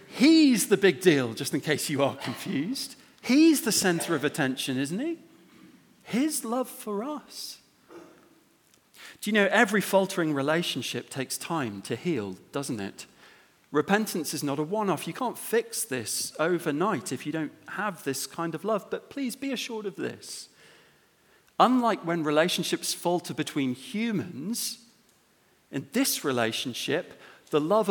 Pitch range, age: 150-235 Hz, 40-59